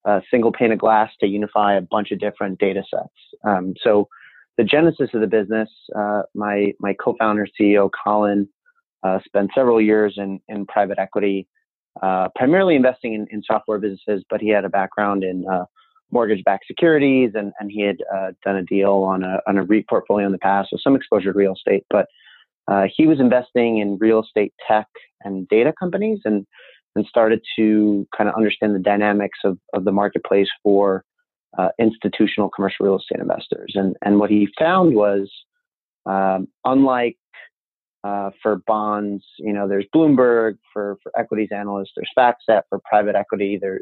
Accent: American